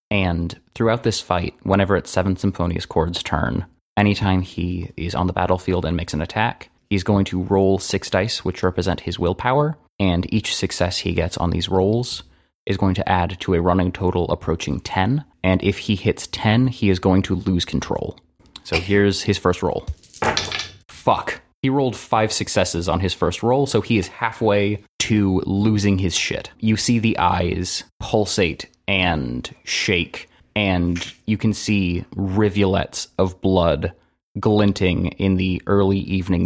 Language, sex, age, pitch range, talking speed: English, male, 20-39, 90-105 Hz, 165 wpm